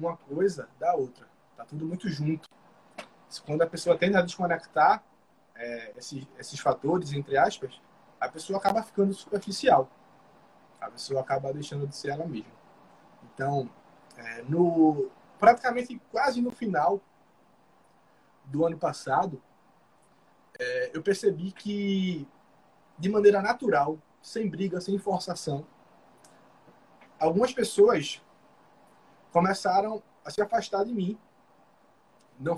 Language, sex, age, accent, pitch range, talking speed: Portuguese, male, 20-39, Brazilian, 160-205 Hz, 110 wpm